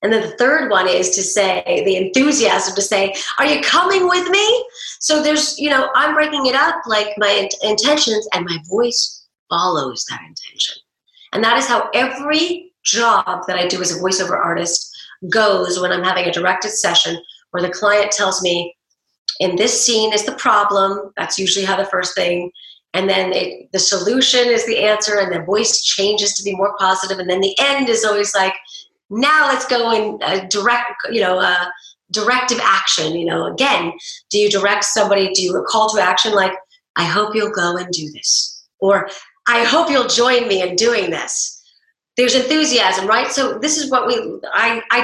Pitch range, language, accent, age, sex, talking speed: 190-255 Hz, English, American, 30-49, female, 190 wpm